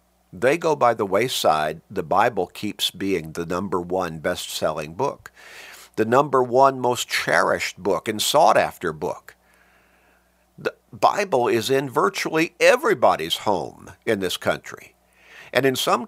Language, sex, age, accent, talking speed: English, male, 50-69, American, 135 wpm